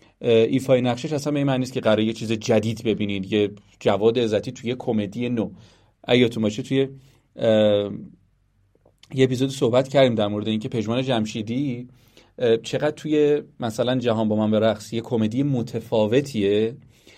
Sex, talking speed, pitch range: male, 145 wpm, 110-140 Hz